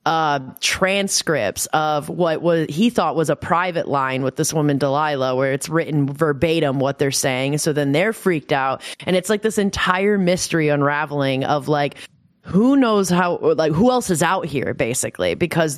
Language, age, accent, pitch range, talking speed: English, 20-39, American, 150-185 Hz, 185 wpm